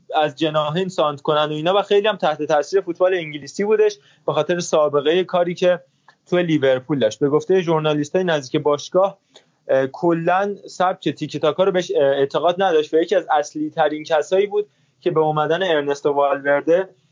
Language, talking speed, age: Persian, 170 wpm, 20-39